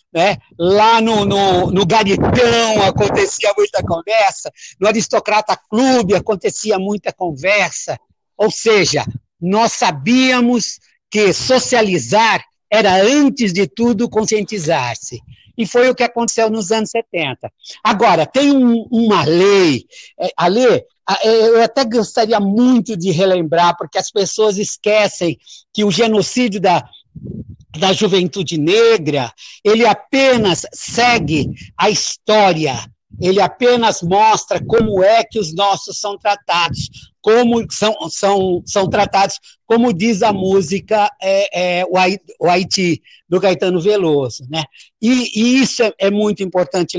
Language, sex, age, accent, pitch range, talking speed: Portuguese, male, 60-79, Brazilian, 185-230 Hz, 120 wpm